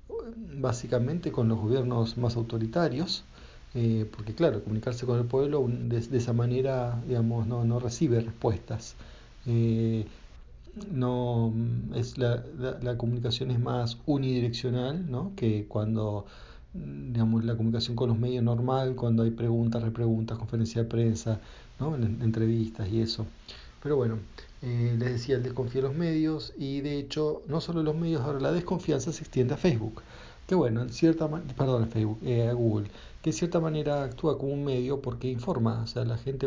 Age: 40-59